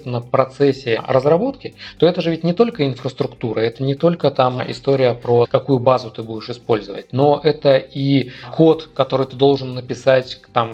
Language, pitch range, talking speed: Russian, 115-140 Hz, 170 wpm